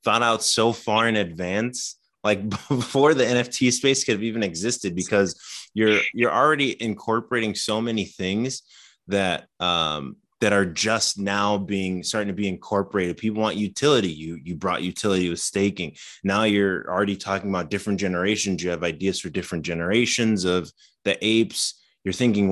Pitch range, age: 90-110 Hz, 20-39